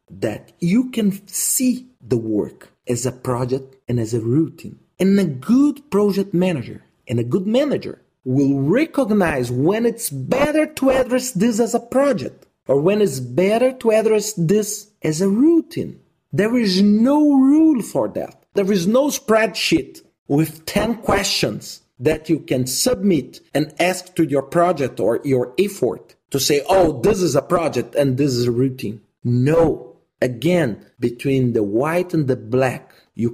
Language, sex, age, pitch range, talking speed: English, male, 40-59, 125-210 Hz, 160 wpm